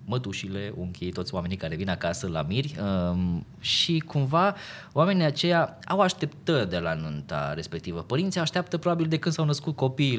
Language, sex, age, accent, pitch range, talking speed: Romanian, male, 20-39, native, 110-155 Hz, 160 wpm